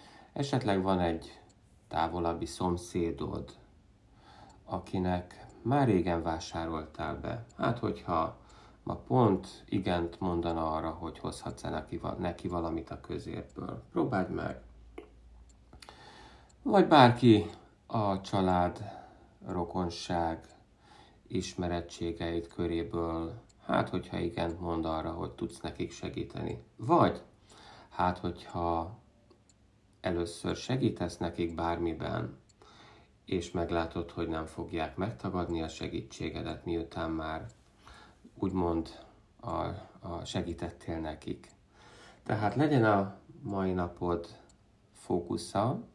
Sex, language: male, Hungarian